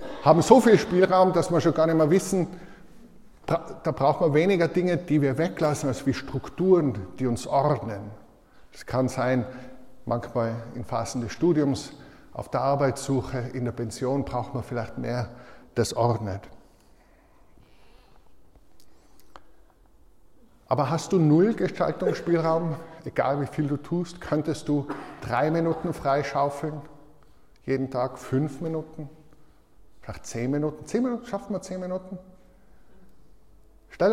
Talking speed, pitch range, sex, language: 130 wpm, 125-165 Hz, male, German